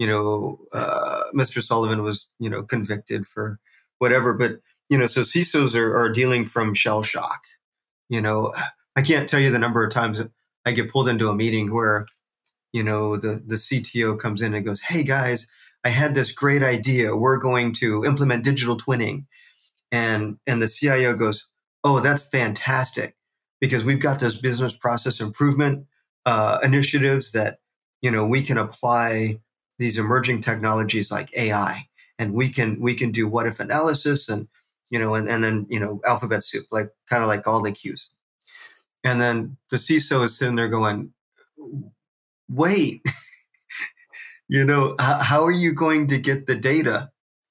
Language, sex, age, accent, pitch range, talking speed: English, male, 30-49, American, 110-135 Hz, 170 wpm